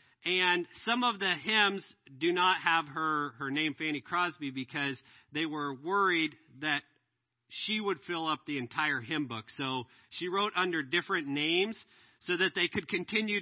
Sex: male